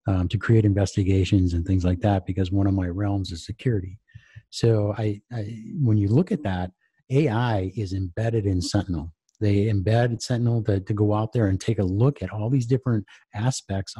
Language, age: English, 50-69